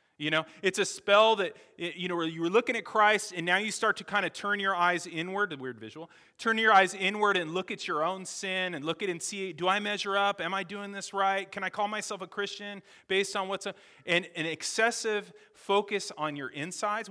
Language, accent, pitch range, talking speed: English, American, 170-210 Hz, 240 wpm